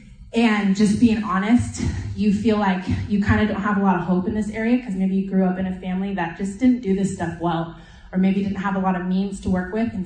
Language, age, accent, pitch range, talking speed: English, 20-39, American, 185-220 Hz, 275 wpm